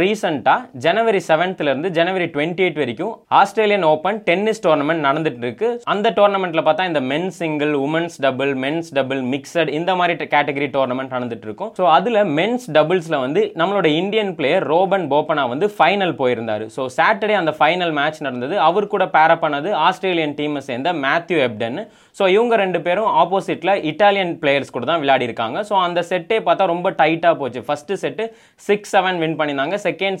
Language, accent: Tamil, native